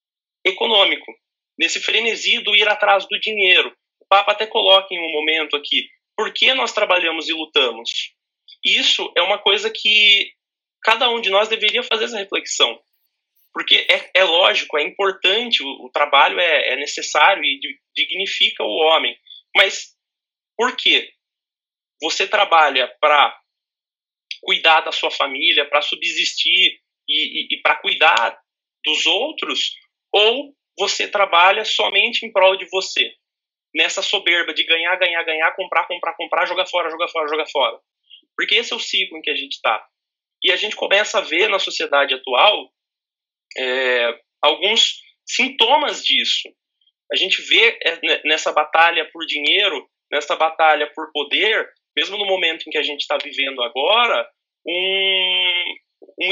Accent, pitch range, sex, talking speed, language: Brazilian, 160-220 Hz, male, 145 wpm, Portuguese